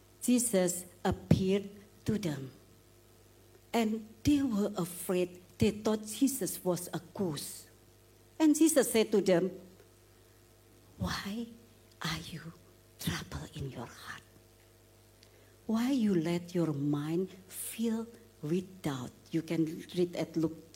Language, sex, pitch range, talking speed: English, female, 110-180 Hz, 115 wpm